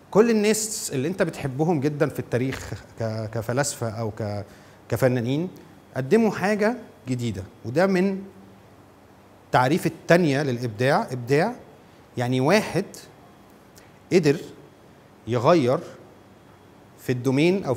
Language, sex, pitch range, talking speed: Arabic, male, 125-175 Hz, 90 wpm